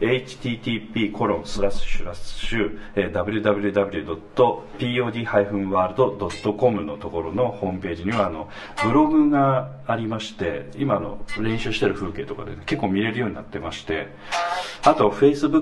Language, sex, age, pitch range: Japanese, male, 40-59, 100-105 Hz